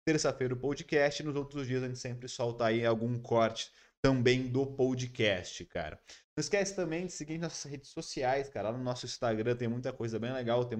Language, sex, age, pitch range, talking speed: Portuguese, male, 20-39, 120-145 Hz, 200 wpm